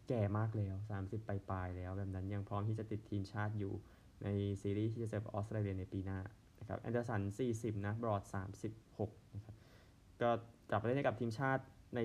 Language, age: Thai, 20-39